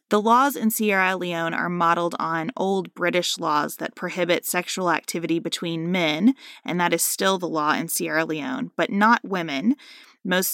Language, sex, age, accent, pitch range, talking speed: English, female, 20-39, American, 170-215 Hz, 170 wpm